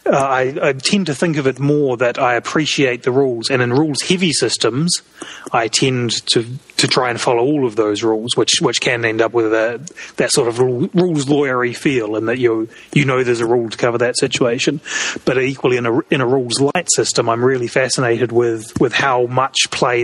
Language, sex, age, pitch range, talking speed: English, male, 30-49, 115-140 Hz, 220 wpm